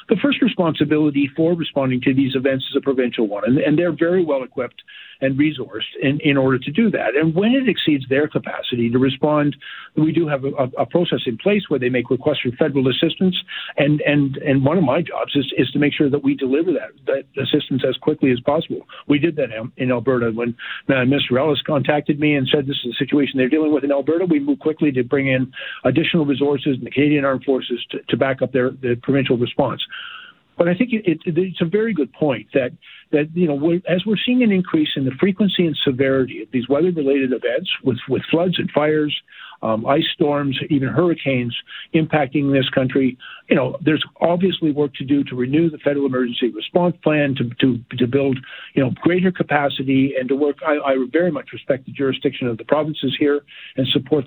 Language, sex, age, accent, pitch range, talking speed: English, male, 50-69, American, 130-160 Hz, 215 wpm